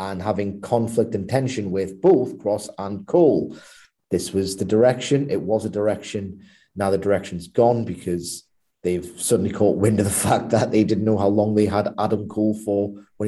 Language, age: English, 30-49